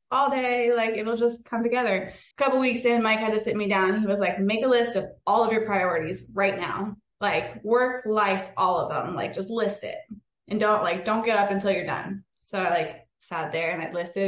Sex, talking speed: female, 245 wpm